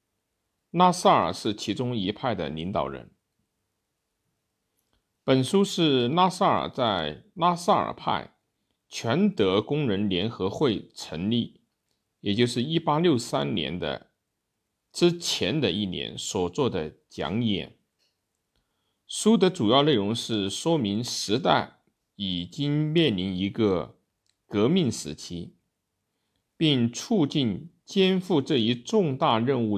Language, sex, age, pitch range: Chinese, male, 50-69, 100-165 Hz